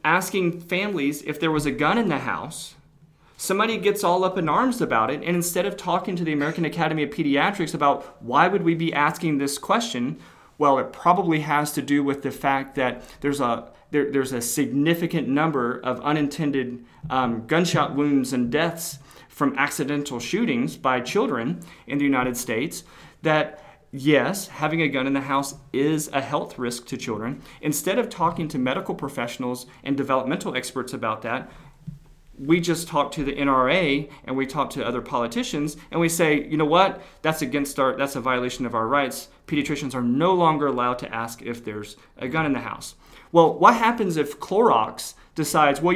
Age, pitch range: 40-59, 135-165 Hz